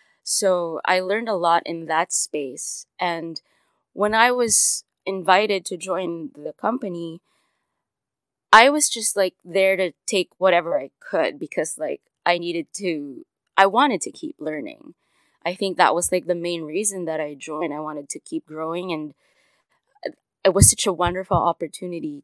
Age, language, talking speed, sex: 20-39, English, 160 wpm, female